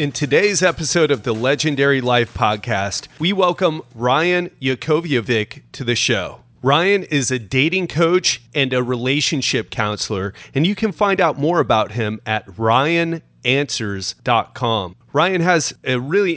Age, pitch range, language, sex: 30-49, 125-165 Hz, English, male